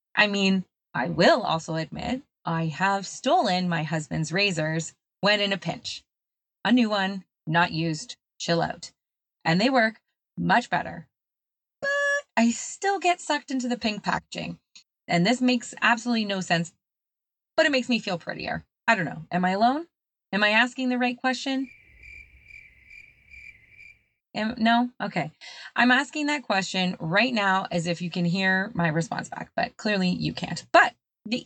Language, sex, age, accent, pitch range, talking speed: English, female, 20-39, American, 170-245 Hz, 160 wpm